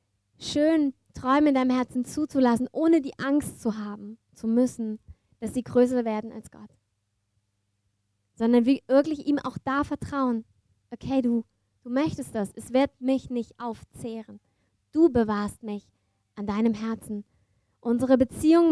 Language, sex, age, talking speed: German, female, 20-39, 140 wpm